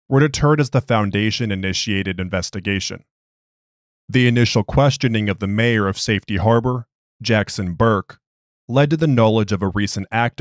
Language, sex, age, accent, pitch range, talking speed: English, male, 30-49, American, 100-120 Hz, 145 wpm